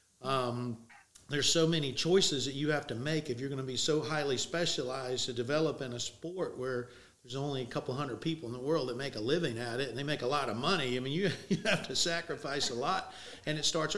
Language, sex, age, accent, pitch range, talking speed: English, male, 50-69, American, 135-170 Hz, 250 wpm